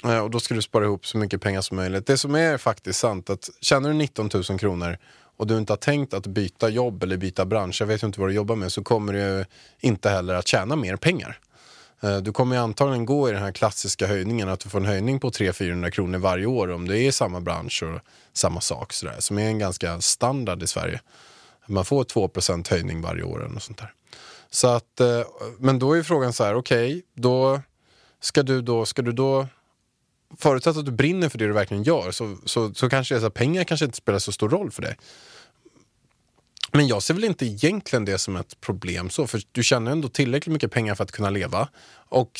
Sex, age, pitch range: male, 20-39, 95-130 Hz